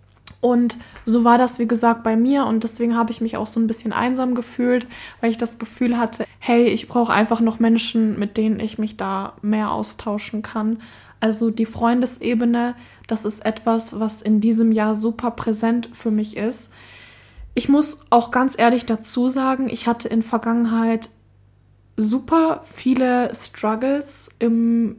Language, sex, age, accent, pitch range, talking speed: German, female, 10-29, German, 215-240 Hz, 165 wpm